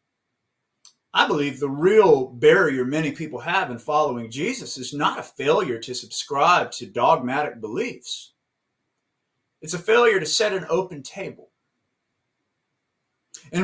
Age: 30-49